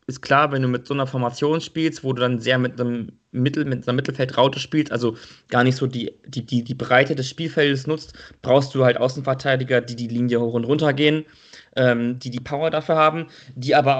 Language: German